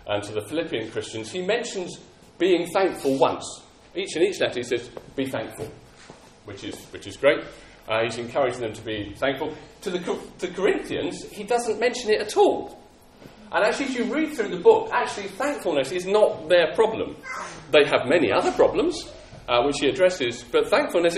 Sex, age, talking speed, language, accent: male, 40-59, 185 wpm, English, British